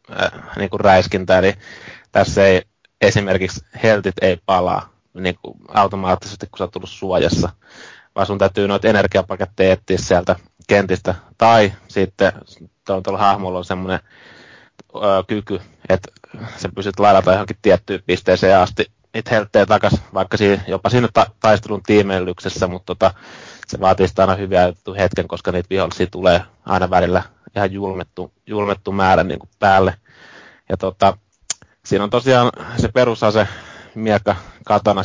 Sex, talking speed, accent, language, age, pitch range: male, 135 wpm, native, Finnish, 20-39, 95-105 Hz